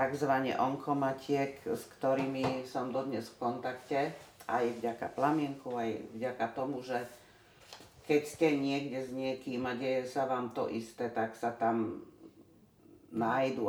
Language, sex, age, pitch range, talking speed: Slovak, female, 40-59, 115-145 Hz, 130 wpm